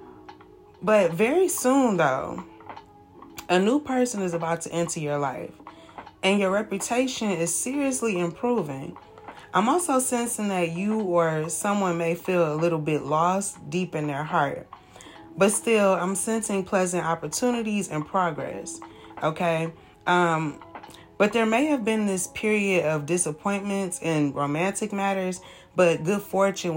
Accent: American